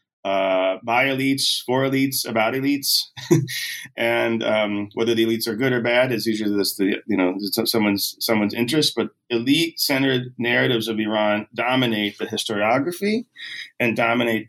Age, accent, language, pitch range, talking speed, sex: 30-49, American, English, 105-135 Hz, 145 wpm, male